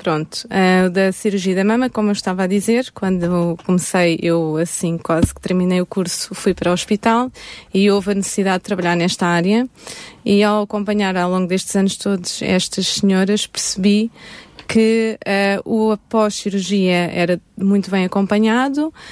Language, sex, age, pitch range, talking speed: Italian, female, 20-39, 185-215 Hz, 160 wpm